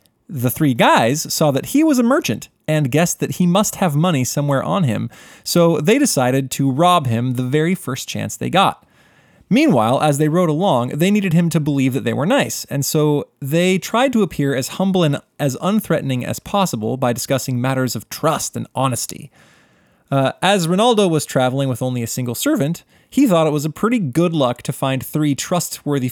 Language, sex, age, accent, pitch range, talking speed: English, male, 20-39, American, 130-180 Hz, 200 wpm